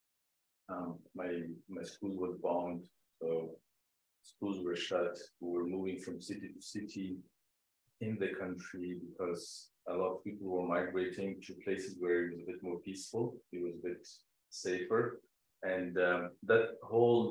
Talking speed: 155 wpm